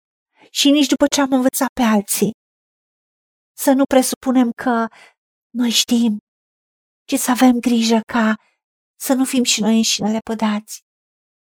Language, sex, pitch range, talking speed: Romanian, female, 215-255 Hz, 135 wpm